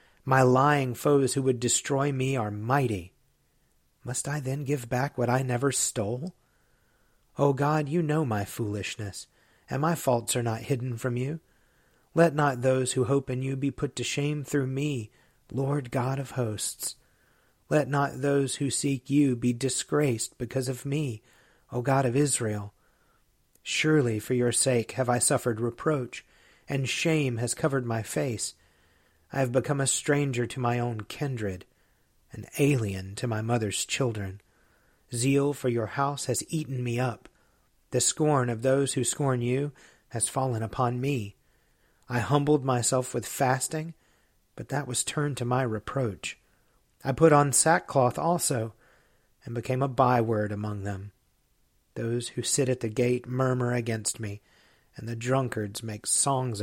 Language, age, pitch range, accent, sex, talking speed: English, 40-59, 115-140 Hz, American, male, 160 wpm